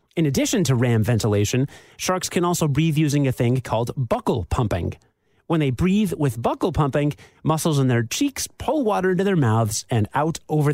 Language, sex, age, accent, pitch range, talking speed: English, male, 30-49, American, 120-190 Hz, 185 wpm